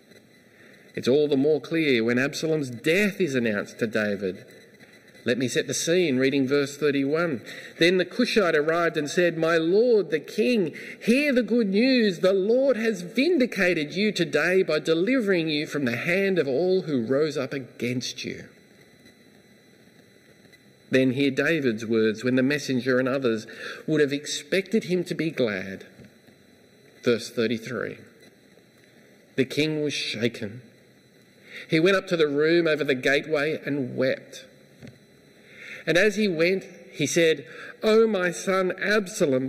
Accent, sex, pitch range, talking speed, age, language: Australian, male, 130-185 Hz, 145 wpm, 50-69, English